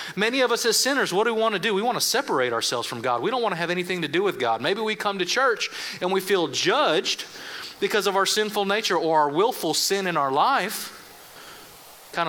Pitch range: 140-195 Hz